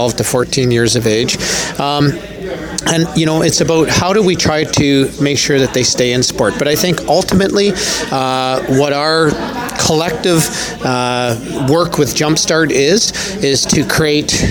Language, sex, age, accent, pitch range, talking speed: English, male, 40-59, American, 120-145 Hz, 160 wpm